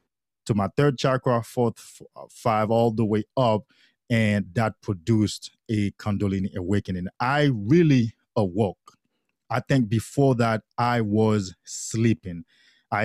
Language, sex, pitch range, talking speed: English, male, 105-125 Hz, 125 wpm